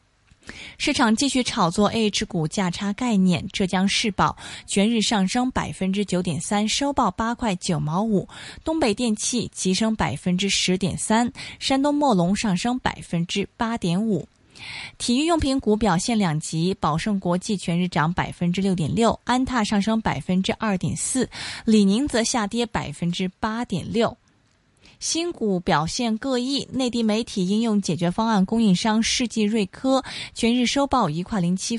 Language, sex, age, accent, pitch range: Chinese, female, 20-39, native, 180-235 Hz